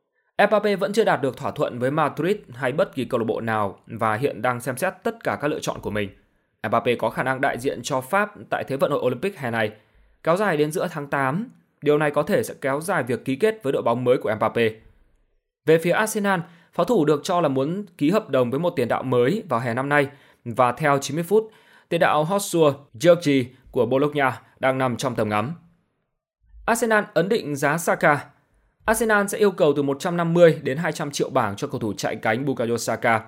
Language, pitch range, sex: Vietnamese, 120-170 Hz, male